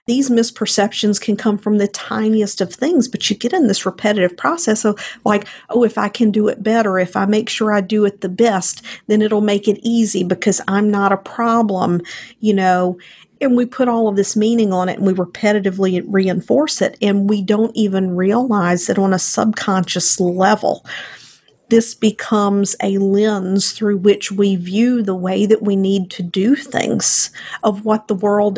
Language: English